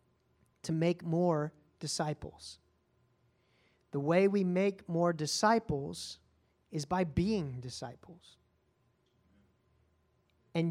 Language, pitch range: English, 145-195 Hz